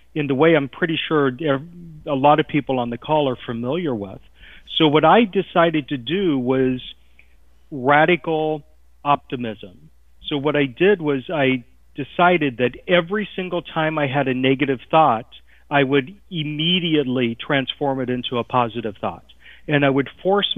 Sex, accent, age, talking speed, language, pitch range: male, American, 40-59, 155 wpm, English, 125-155 Hz